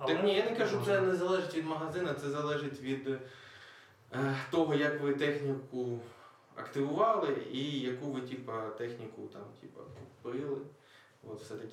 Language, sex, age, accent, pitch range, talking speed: Ukrainian, male, 20-39, native, 120-145 Hz, 145 wpm